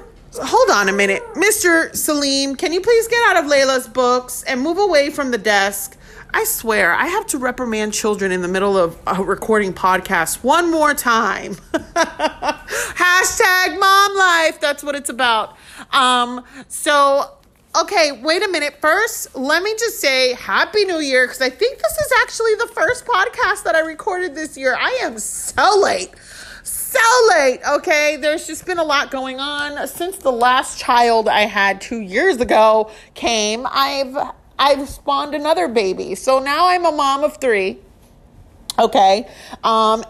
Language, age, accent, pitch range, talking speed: English, 30-49, American, 230-350 Hz, 165 wpm